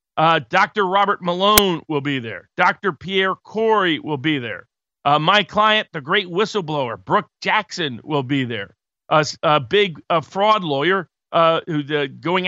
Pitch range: 145-185 Hz